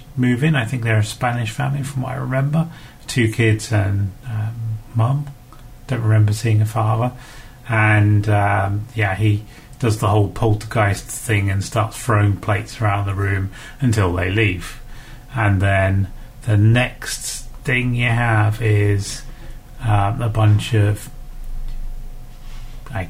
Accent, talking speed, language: British, 140 wpm, English